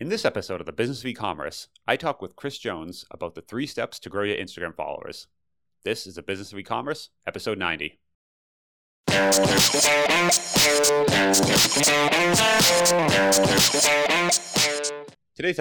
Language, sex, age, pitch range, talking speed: English, male, 30-49, 90-125 Hz, 120 wpm